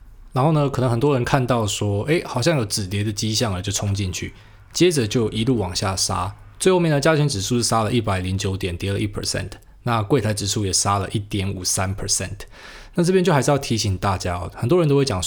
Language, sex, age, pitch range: Chinese, male, 20-39, 100-130 Hz